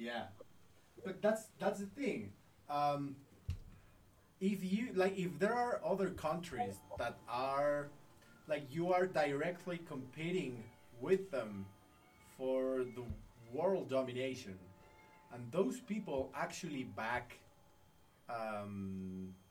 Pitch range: 105-145 Hz